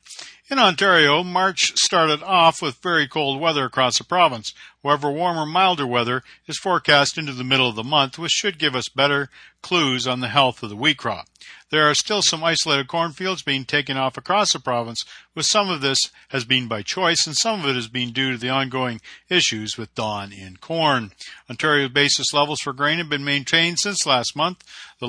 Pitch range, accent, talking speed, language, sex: 130-165 Hz, American, 200 wpm, English, male